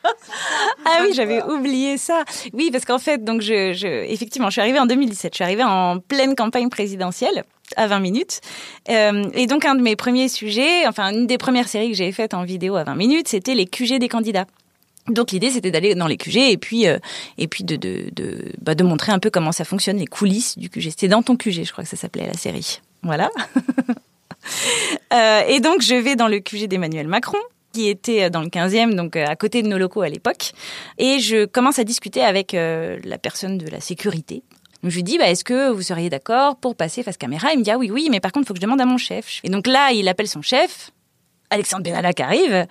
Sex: female